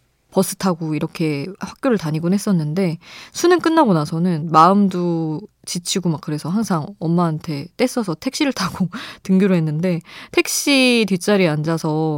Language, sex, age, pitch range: Korean, female, 20-39, 165-225 Hz